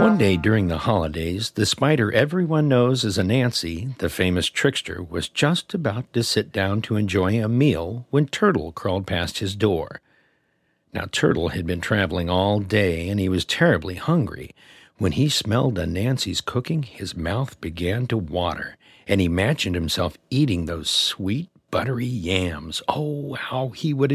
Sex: male